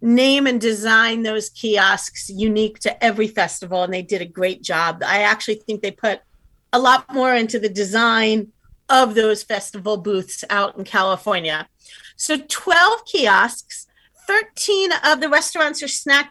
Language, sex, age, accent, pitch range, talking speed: English, female, 40-59, American, 230-300 Hz, 155 wpm